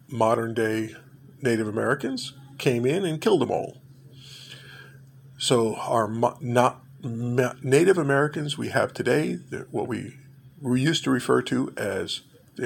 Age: 50-69